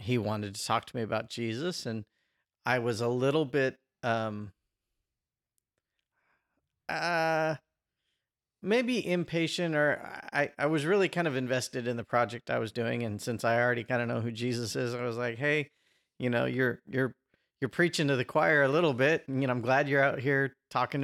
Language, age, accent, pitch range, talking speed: English, 40-59, American, 115-135 Hz, 190 wpm